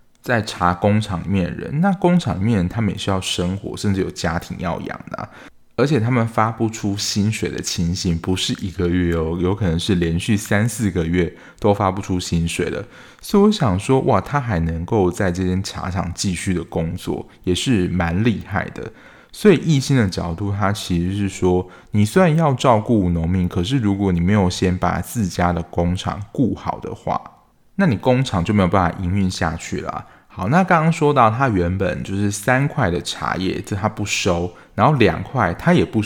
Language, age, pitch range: Chinese, 20-39, 90-115 Hz